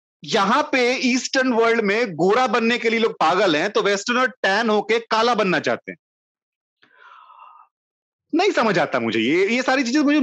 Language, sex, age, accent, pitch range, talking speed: Hindi, male, 30-49, native, 175-275 Hz, 170 wpm